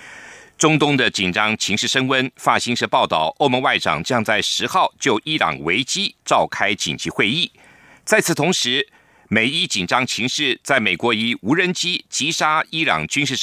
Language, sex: German, male